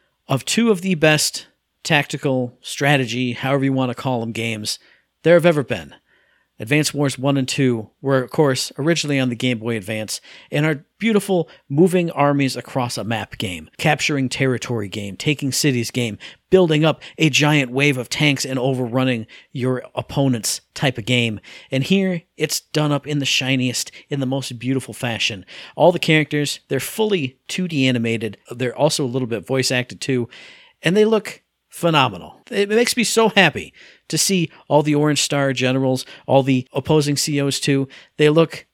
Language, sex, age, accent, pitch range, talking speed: English, male, 40-59, American, 125-155 Hz, 175 wpm